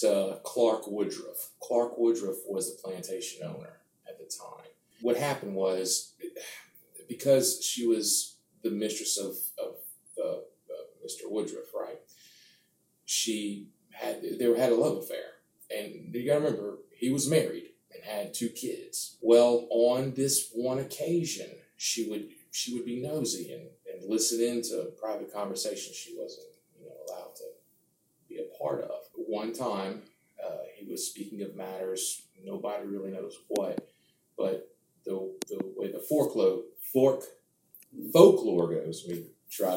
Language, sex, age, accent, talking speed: English, male, 30-49, American, 145 wpm